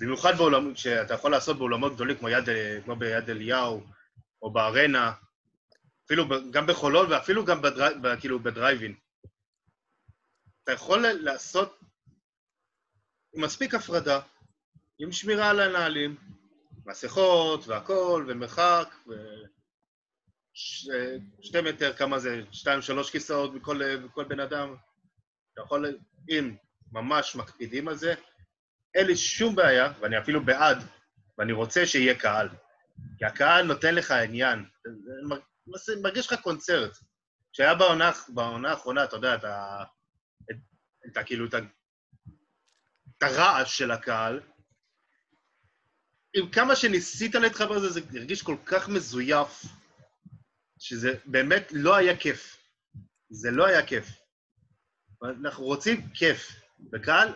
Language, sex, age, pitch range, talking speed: Hebrew, male, 20-39, 120-170 Hz, 120 wpm